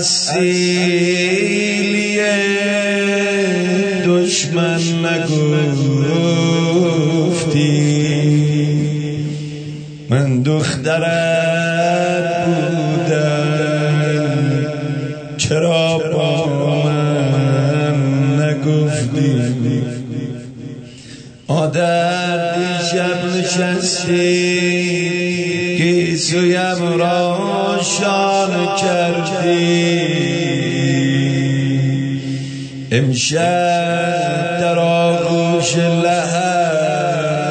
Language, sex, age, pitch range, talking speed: Persian, male, 30-49, 145-175 Hz, 35 wpm